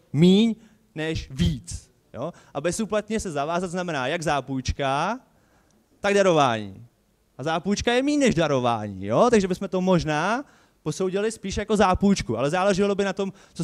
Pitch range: 135-195 Hz